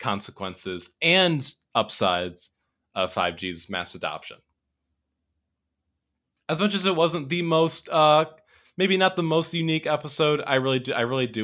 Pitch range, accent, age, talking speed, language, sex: 90-130 Hz, American, 20-39, 140 wpm, English, male